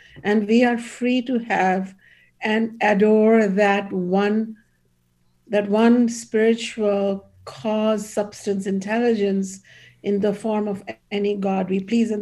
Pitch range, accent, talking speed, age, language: 180-215 Hz, Indian, 125 wpm, 50-69, English